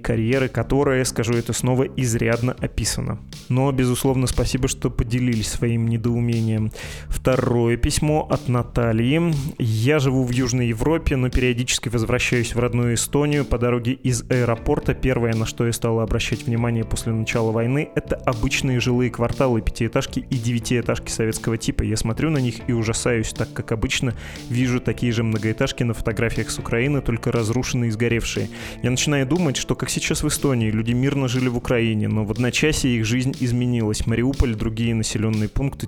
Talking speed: 160 wpm